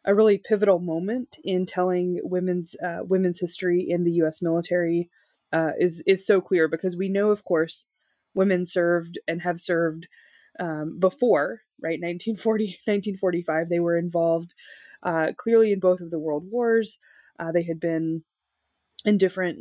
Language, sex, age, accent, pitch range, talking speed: English, female, 20-39, American, 165-200 Hz, 155 wpm